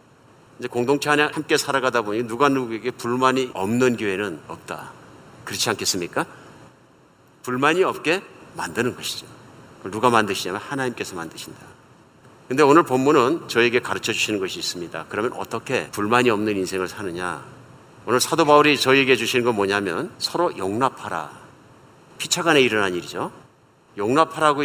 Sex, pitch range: male, 125-165 Hz